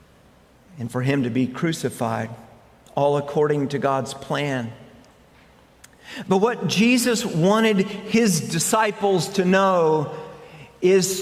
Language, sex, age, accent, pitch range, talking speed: English, male, 50-69, American, 150-210 Hz, 105 wpm